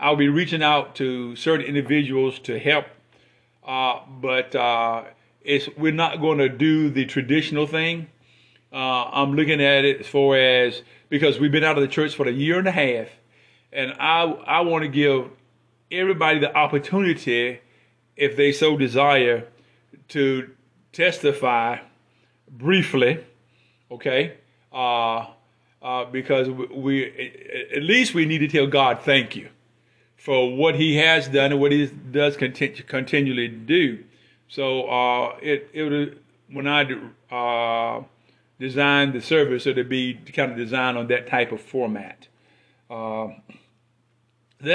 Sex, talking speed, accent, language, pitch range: male, 145 wpm, American, English, 125-150 Hz